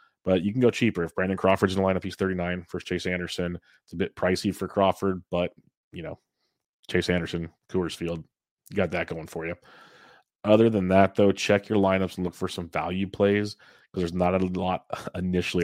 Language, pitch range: English, 90-95 Hz